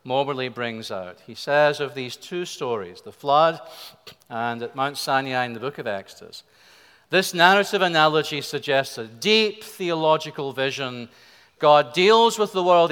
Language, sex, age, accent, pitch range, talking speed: English, male, 40-59, British, 125-175 Hz, 155 wpm